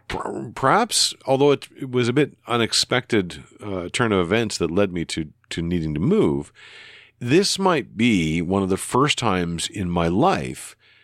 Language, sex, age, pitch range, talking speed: English, male, 50-69, 85-115 Hz, 165 wpm